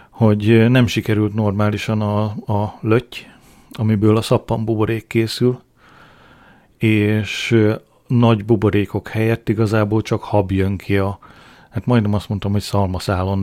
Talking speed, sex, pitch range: 125 wpm, male, 100-115 Hz